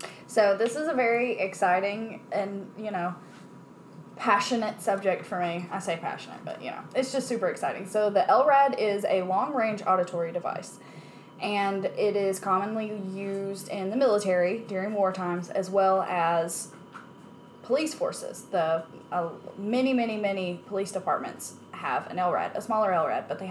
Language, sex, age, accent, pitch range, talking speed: English, female, 10-29, American, 180-225 Hz, 160 wpm